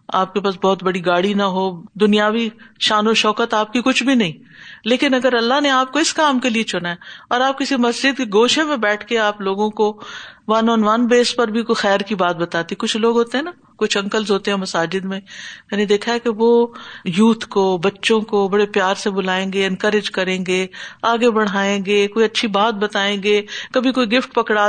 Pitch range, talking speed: 195-240 Hz, 225 wpm